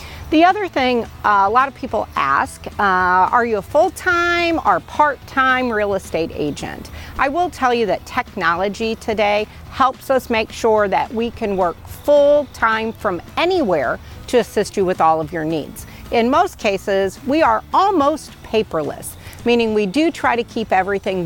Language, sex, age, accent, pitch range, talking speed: English, female, 40-59, American, 190-265 Hz, 170 wpm